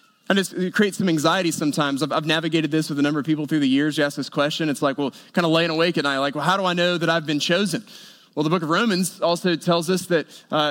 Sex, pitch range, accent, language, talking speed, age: male, 165-215 Hz, American, English, 285 wpm, 20-39